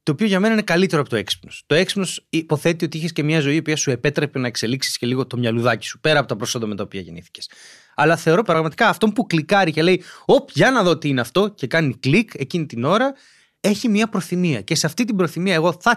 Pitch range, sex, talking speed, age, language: 135-190 Hz, male, 250 wpm, 30-49, Greek